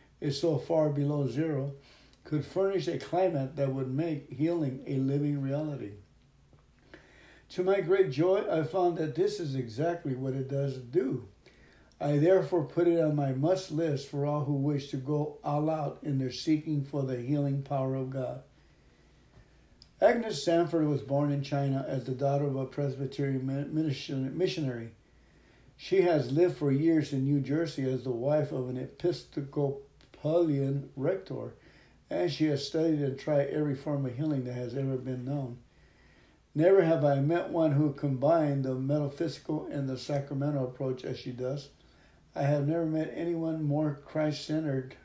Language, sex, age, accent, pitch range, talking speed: English, male, 60-79, American, 135-155 Hz, 165 wpm